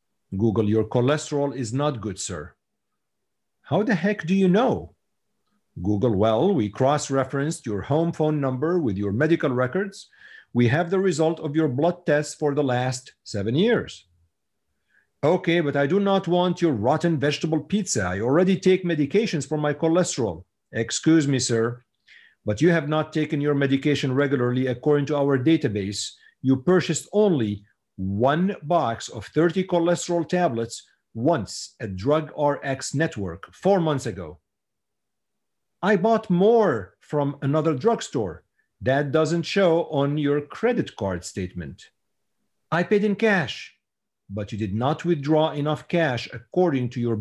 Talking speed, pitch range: 145 wpm, 120-170 Hz